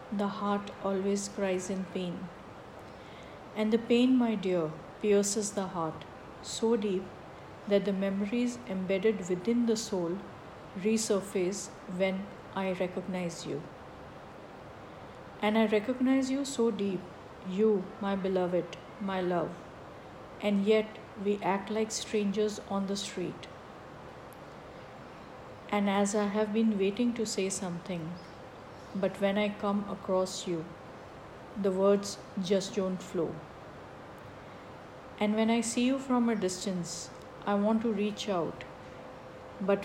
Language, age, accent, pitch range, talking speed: English, 50-69, Indian, 190-215 Hz, 125 wpm